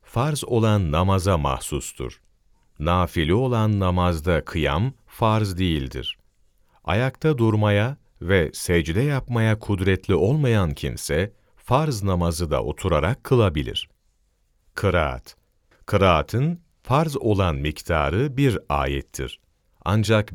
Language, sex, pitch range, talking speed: Turkish, male, 85-120 Hz, 90 wpm